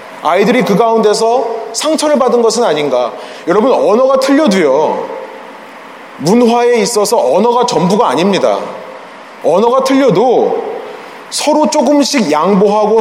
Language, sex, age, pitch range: Korean, male, 30-49, 185-285 Hz